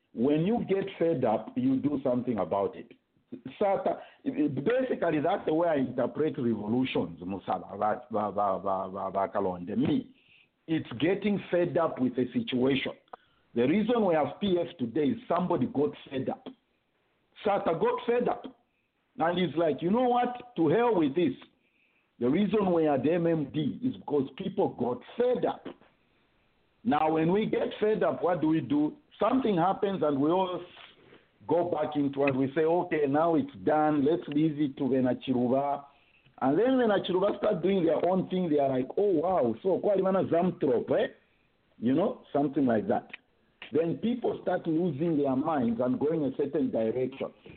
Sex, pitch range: male, 145-210 Hz